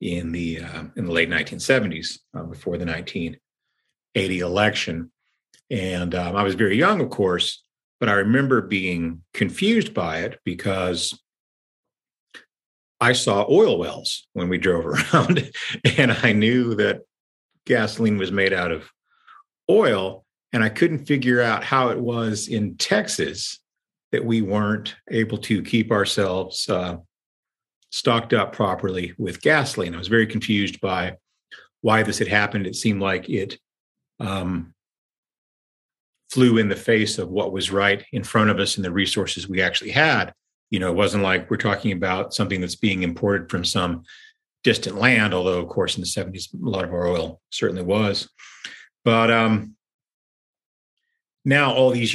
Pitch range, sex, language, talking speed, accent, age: 90-115 Hz, male, English, 155 wpm, American, 50-69